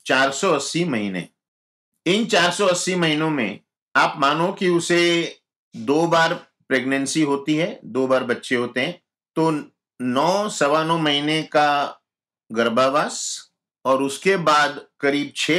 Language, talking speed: Hindi, 125 wpm